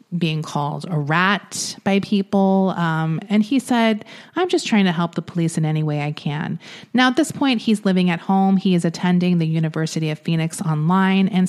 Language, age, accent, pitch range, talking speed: English, 30-49, American, 160-195 Hz, 205 wpm